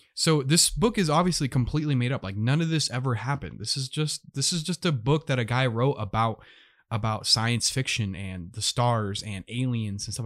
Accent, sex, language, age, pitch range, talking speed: American, male, English, 20-39, 115-145 Hz, 215 wpm